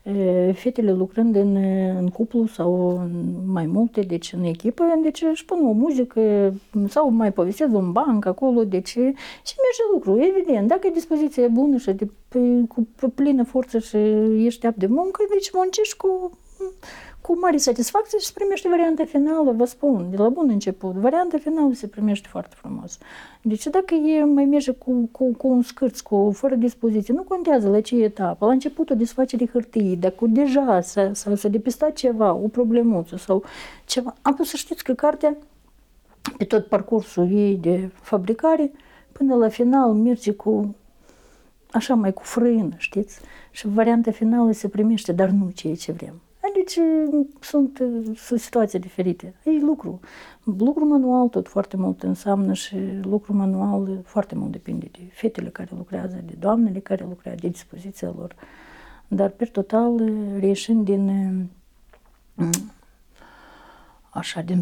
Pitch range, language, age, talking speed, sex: 195-275 Hz, Romanian, 50-69, 155 wpm, female